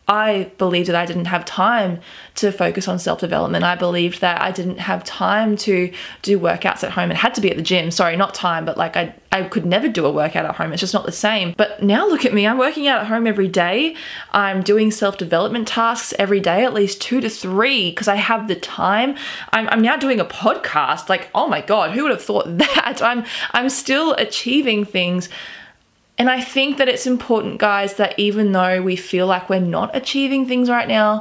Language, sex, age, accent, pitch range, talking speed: English, female, 20-39, Australian, 185-225 Hz, 225 wpm